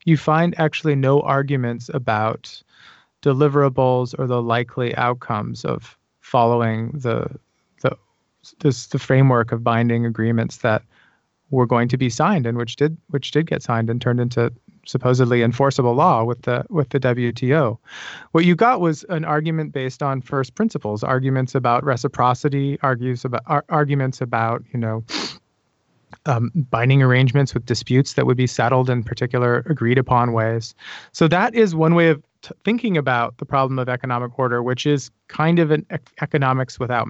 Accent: American